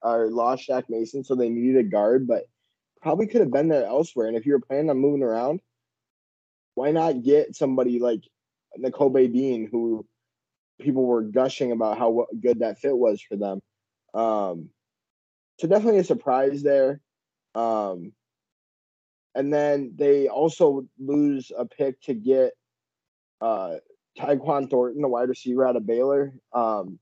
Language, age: English, 10-29